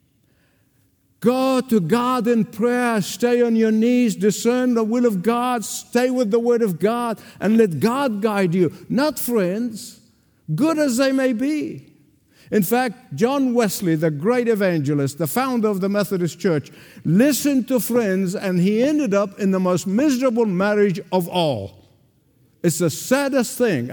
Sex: male